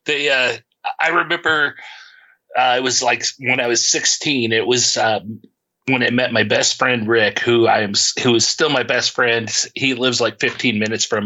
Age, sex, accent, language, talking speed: 30-49, male, American, English, 195 wpm